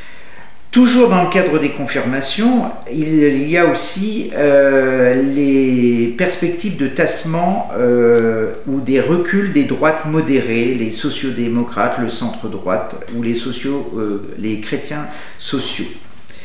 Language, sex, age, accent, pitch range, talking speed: French, male, 50-69, French, 130-170 Hz, 120 wpm